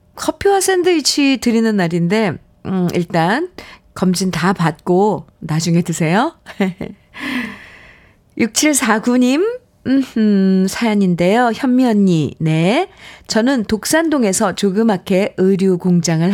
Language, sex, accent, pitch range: Korean, female, native, 180-245 Hz